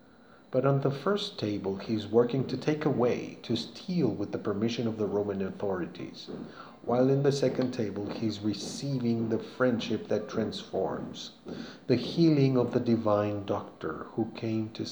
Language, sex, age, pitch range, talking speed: Spanish, male, 40-59, 110-135 Hz, 155 wpm